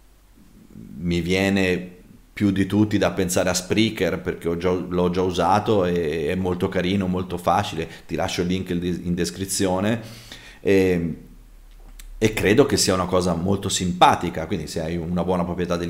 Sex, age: male, 30-49